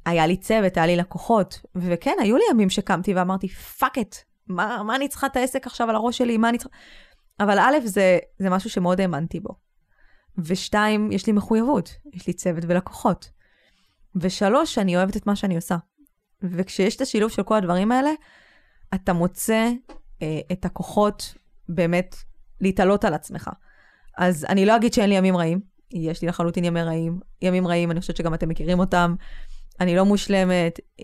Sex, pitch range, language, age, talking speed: female, 180-220 Hz, Hebrew, 20-39, 175 wpm